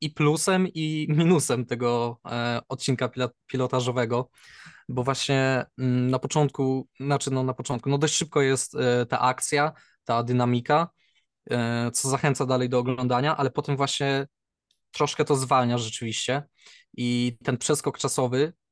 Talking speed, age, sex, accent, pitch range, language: 135 wpm, 20-39, male, native, 125-145 Hz, Polish